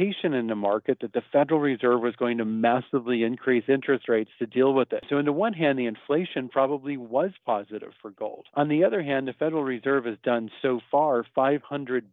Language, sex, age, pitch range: English, male, 40-59, 115-145 Hz